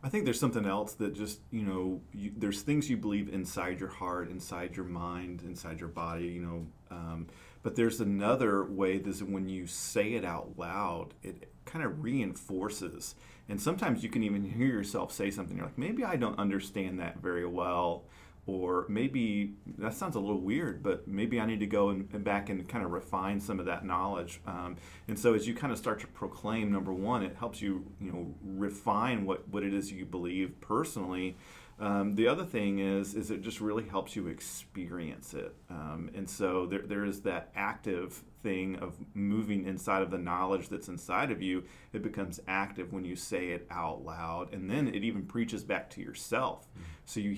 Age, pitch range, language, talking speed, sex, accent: 40-59, 90-105 Hz, English, 200 wpm, male, American